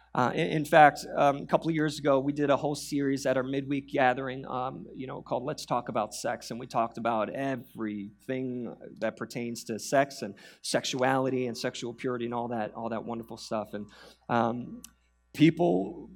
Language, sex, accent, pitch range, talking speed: English, male, American, 120-175 Hz, 190 wpm